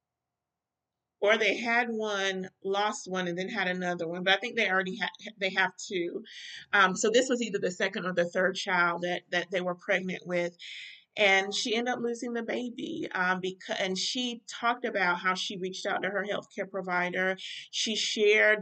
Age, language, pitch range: 30-49, English, 180-205 Hz